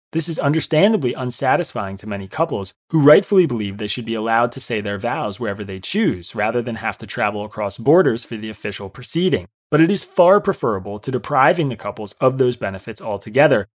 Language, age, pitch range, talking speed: English, 30-49, 105-145 Hz, 195 wpm